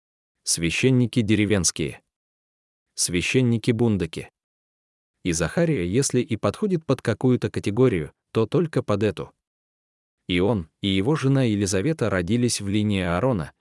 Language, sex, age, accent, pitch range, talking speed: Russian, male, 30-49, native, 95-125 Hz, 110 wpm